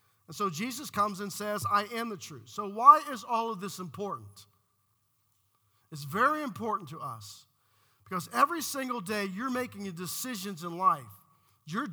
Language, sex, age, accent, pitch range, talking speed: English, male, 50-69, American, 190-235 Hz, 160 wpm